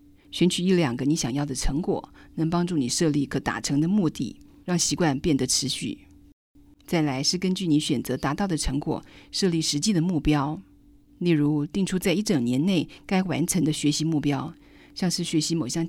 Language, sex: Chinese, female